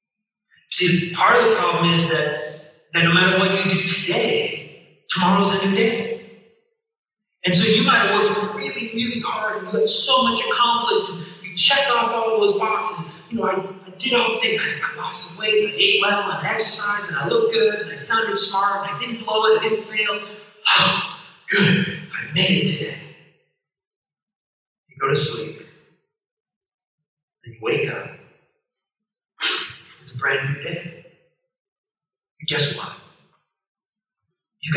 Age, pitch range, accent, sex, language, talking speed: 30-49, 170-225 Hz, American, male, English, 165 wpm